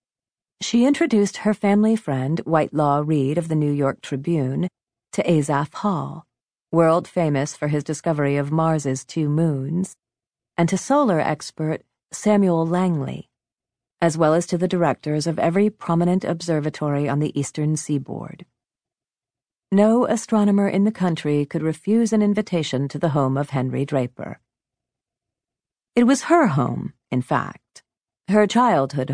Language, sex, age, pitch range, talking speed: English, female, 40-59, 145-185 Hz, 140 wpm